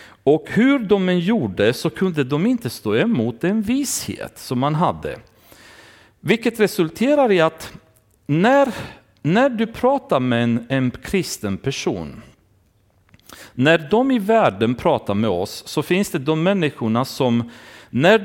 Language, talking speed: Swedish, 140 wpm